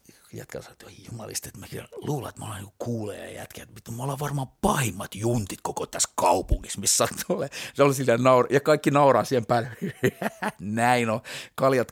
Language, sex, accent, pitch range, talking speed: Finnish, male, native, 110-135 Hz, 190 wpm